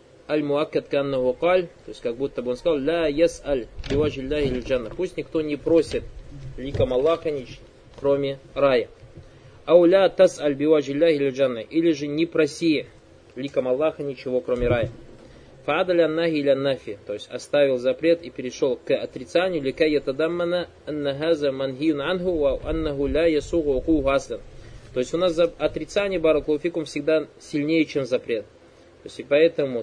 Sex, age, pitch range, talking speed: male, 20-39, 140-170 Hz, 125 wpm